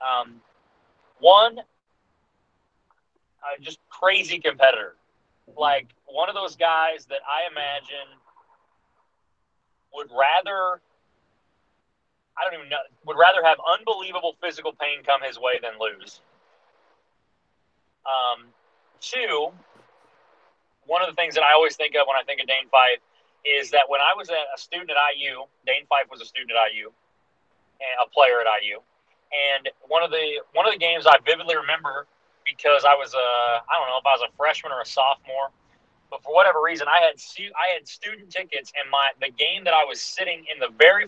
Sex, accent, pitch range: male, American, 140-180 Hz